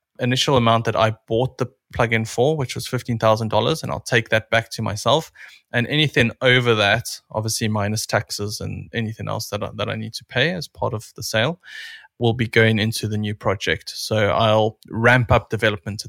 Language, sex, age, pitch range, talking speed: English, male, 20-39, 105-125 Hz, 200 wpm